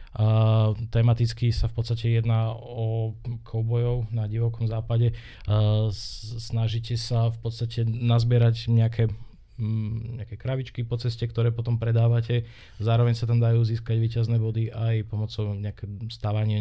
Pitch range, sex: 105-115 Hz, male